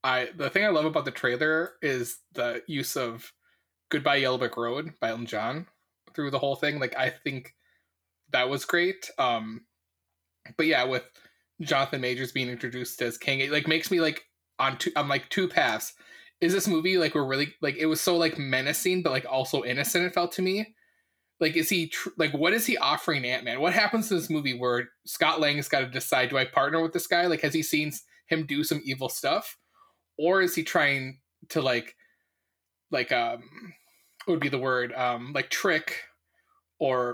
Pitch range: 125-170 Hz